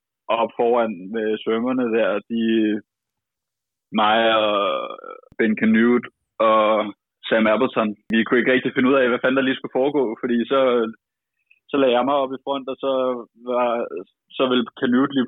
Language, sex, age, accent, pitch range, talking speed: Danish, male, 20-39, native, 110-125 Hz, 170 wpm